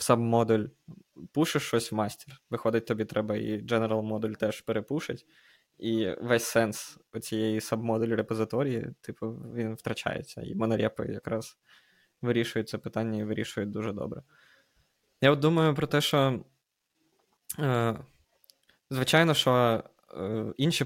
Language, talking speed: Ukrainian, 120 wpm